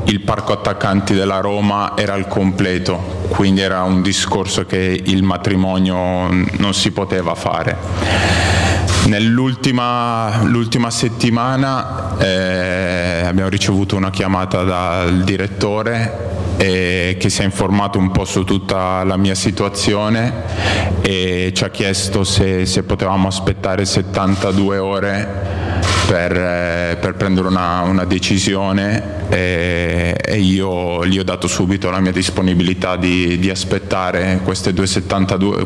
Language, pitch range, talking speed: Italian, 90-100 Hz, 120 wpm